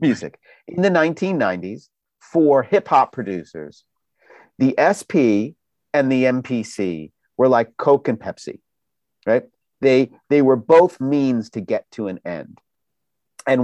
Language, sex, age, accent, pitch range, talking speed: English, male, 50-69, American, 110-150 Hz, 130 wpm